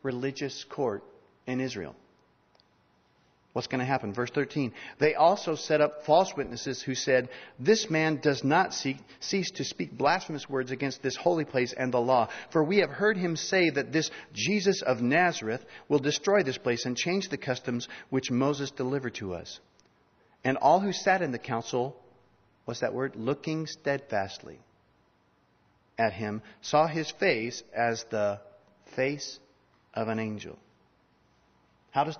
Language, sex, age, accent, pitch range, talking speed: English, male, 40-59, American, 125-155 Hz, 155 wpm